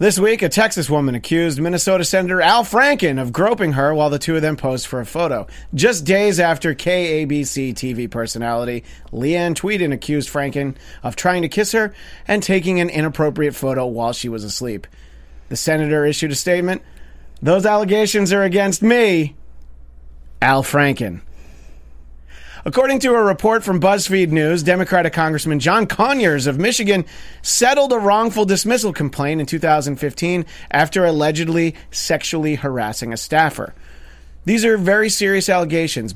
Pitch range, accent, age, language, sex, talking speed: 135-190 Hz, American, 30-49, English, male, 150 wpm